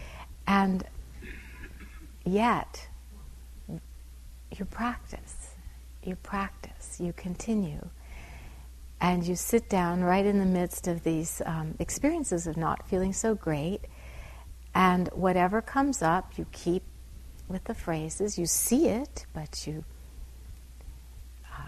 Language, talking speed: English, 110 wpm